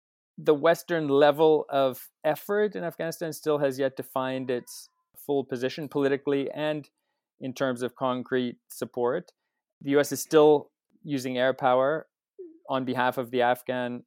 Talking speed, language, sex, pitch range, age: 145 wpm, English, male, 125-150 Hz, 30-49